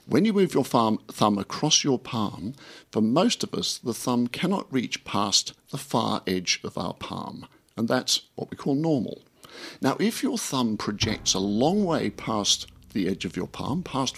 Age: 50-69